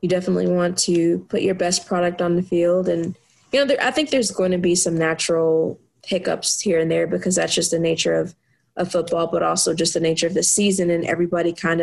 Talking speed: 230 wpm